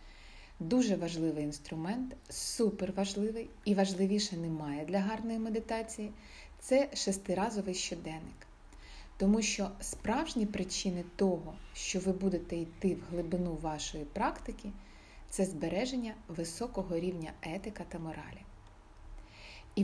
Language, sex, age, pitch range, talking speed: Ukrainian, female, 30-49, 170-210 Hz, 110 wpm